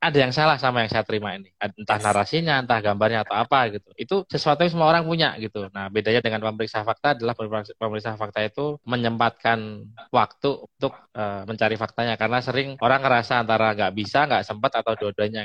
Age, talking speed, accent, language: 20-39, 185 wpm, native, Indonesian